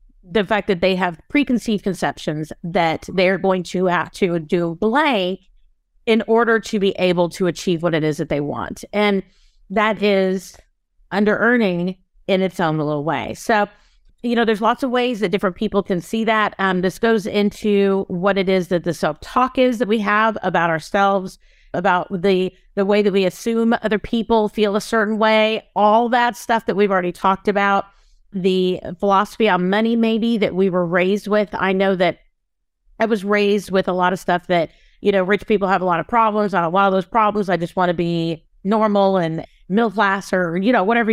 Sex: female